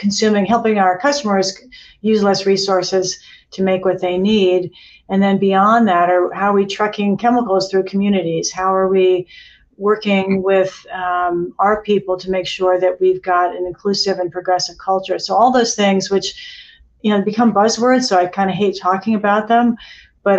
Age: 50-69